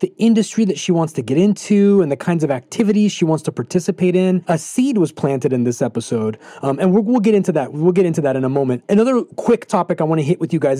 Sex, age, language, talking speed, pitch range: male, 30-49, English, 265 wpm, 140-195 Hz